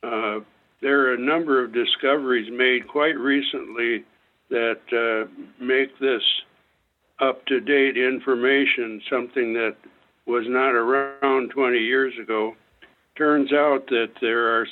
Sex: male